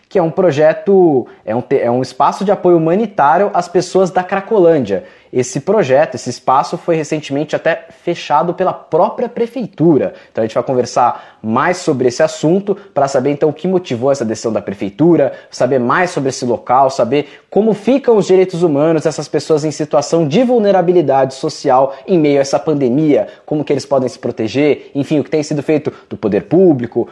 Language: Portuguese